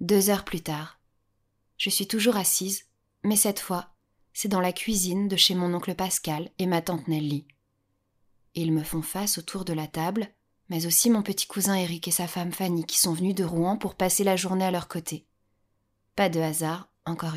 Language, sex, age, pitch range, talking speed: French, female, 20-39, 155-195 Hz, 200 wpm